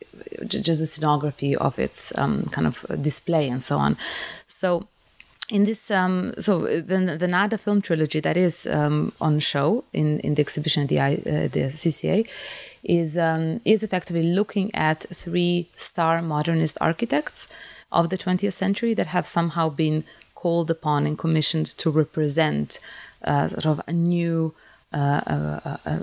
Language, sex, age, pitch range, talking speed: English, female, 20-39, 155-190 Hz, 155 wpm